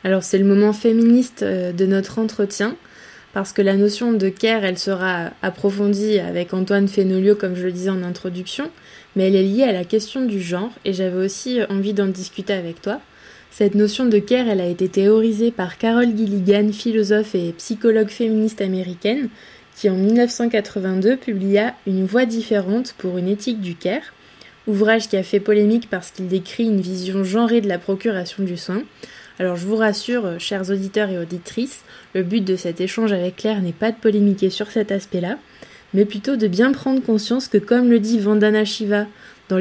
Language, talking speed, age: French, 190 wpm, 20-39